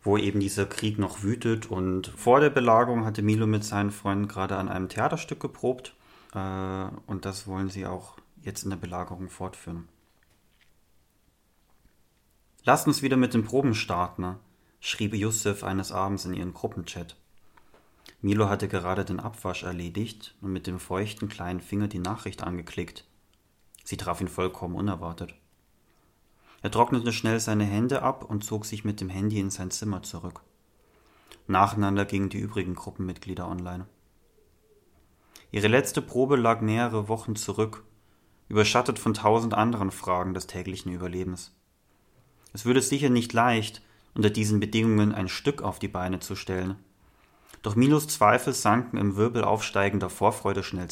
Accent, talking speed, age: German, 150 wpm, 30-49